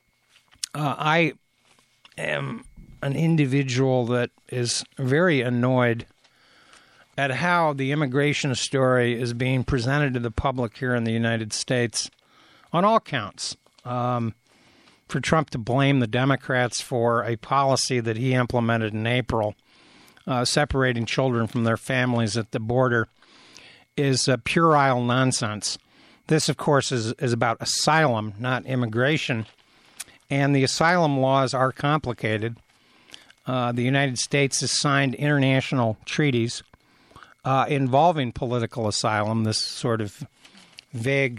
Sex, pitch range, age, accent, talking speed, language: male, 120-140 Hz, 60-79, American, 125 wpm, English